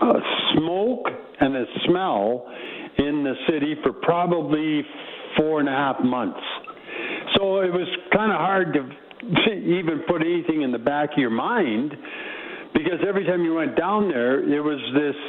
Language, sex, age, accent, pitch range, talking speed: English, male, 60-79, American, 135-175 Hz, 160 wpm